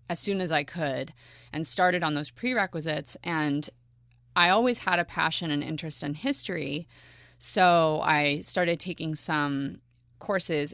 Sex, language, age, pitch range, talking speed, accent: female, English, 30-49, 150-180 Hz, 145 wpm, American